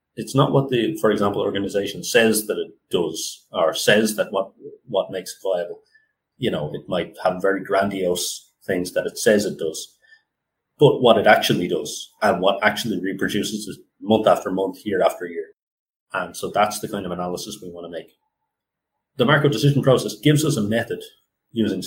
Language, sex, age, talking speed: English, male, 30-49, 185 wpm